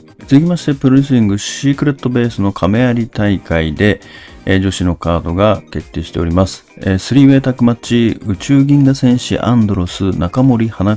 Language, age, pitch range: Japanese, 40-59, 90-125 Hz